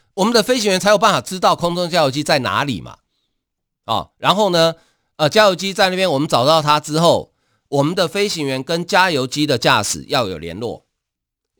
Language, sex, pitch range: Chinese, male, 120-180 Hz